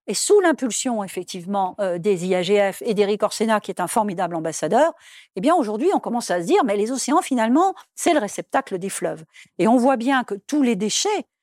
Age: 50-69